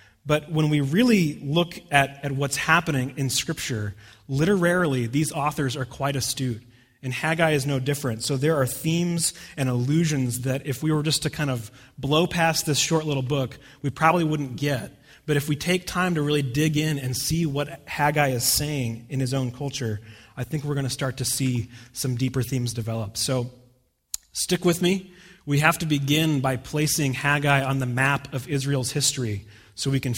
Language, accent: English, American